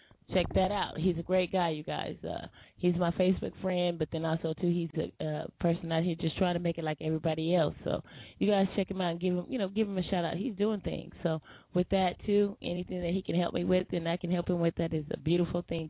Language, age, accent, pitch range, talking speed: English, 20-39, American, 165-185 Hz, 275 wpm